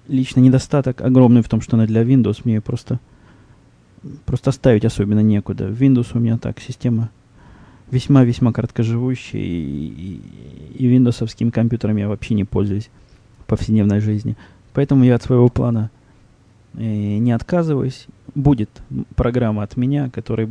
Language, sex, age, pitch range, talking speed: Russian, male, 20-39, 110-125 Hz, 140 wpm